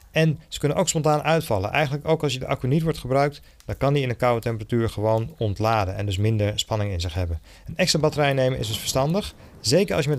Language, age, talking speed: Dutch, 40-59, 245 wpm